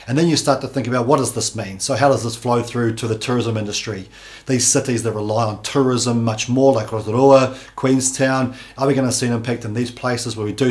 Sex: male